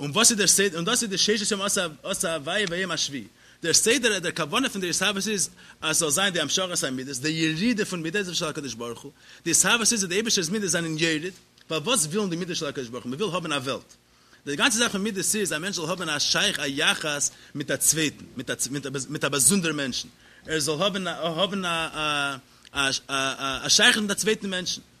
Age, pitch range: 30-49, 145-205 Hz